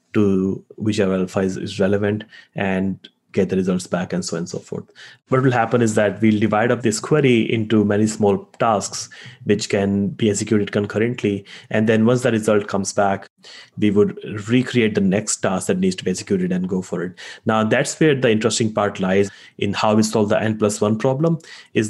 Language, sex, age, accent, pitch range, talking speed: English, male, 30-49, Indian, 100-115 Hz, 205 wpm